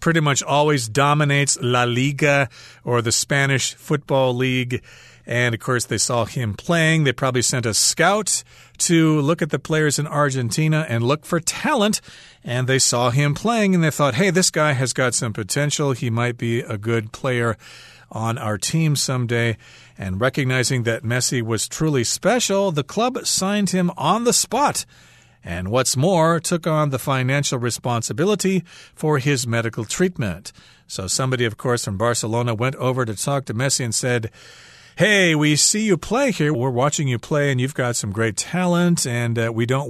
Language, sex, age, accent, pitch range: Chinese, male, 40-59, American, 120-155 Hz